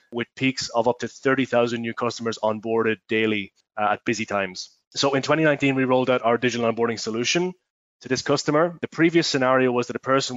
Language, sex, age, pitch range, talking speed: English, male, 20-39, 115-135 Hz, 190 wpm